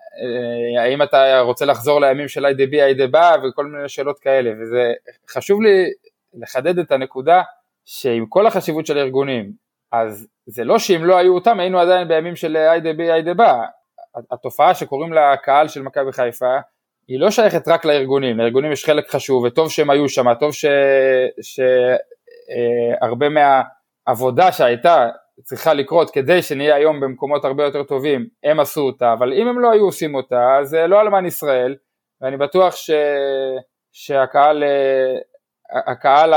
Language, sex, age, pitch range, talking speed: Hebrew, male, 20-39, 130-165 Hz, 155 wpm